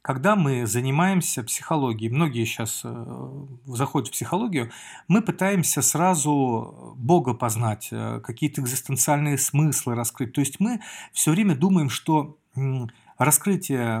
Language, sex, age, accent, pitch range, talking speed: Russian, male, 40-59, native, 130-170 Hz, 110 wpm